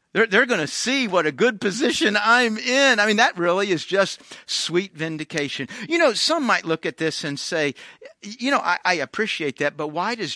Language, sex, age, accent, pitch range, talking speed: English, male, 50-69, American, 145-200 Hz, 215 wpm